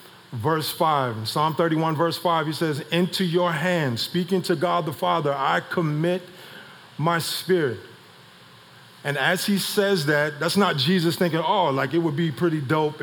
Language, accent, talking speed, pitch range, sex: English, American, 165 wpm, 145-175 Hz, male